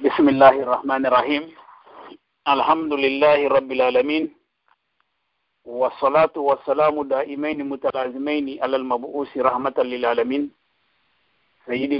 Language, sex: English, male